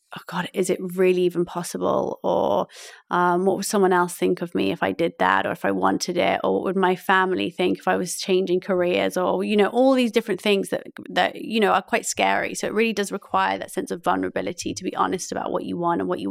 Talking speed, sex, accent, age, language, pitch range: 255 wpm, female, British, 20-39, English, 175-210 Hz